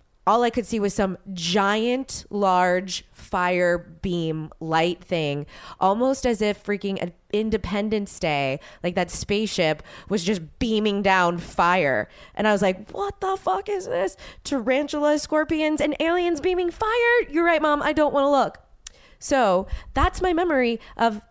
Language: English